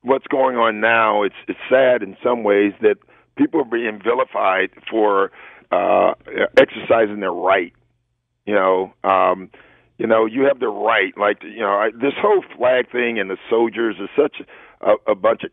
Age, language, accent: 50-69, English, American